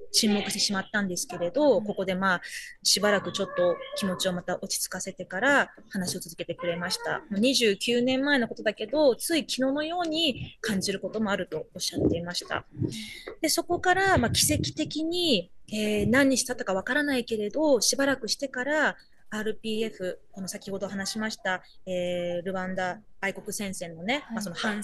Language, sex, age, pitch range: Japanese, female, 20-39, 190-260 Hz